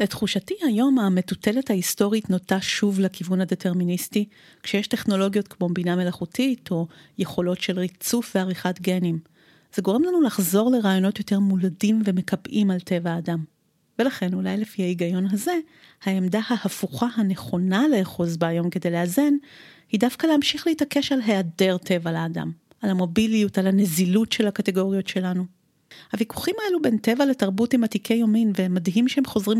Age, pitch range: 30-49, 185-230 Hz